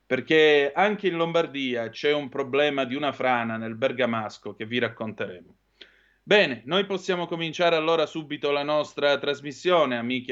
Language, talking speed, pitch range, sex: Italian, 145 wpm, 120-155 Hz, male